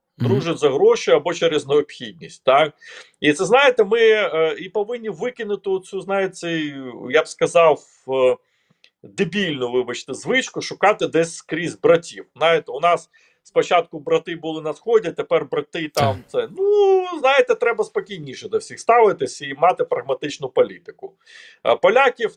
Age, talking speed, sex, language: 40-59, 135 wpm, male, Ukrainian